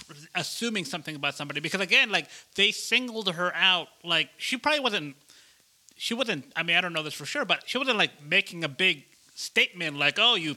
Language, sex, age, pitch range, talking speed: English, male, 30-49, 155-200 Hz, 205 wpm